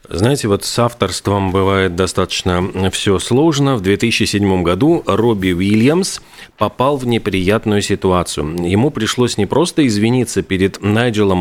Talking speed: 125 wpm